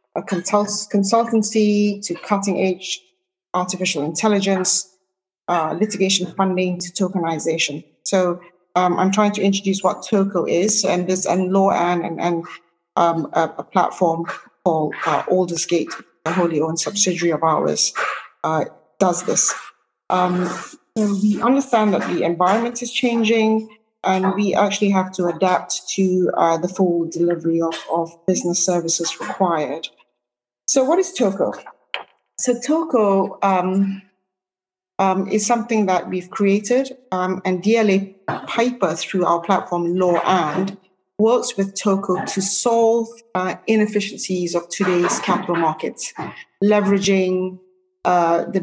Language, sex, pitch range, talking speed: English, female, 175-210 Hz, 125 wpm